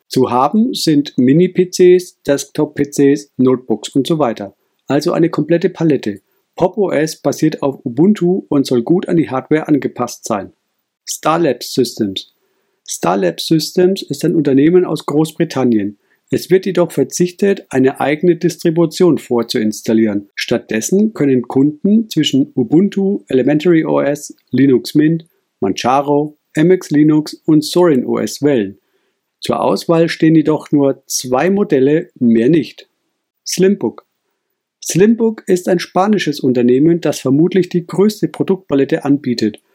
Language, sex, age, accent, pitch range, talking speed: German, male, 50-69, German, 130-175 Hz, 120 wpm